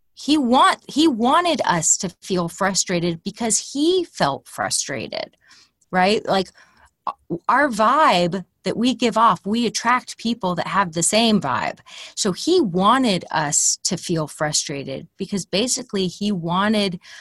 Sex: female